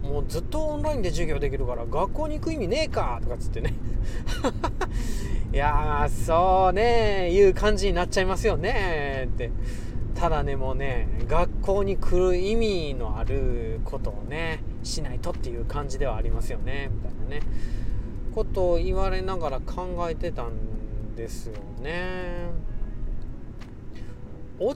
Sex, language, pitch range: male, Japanese, 110-150 Hz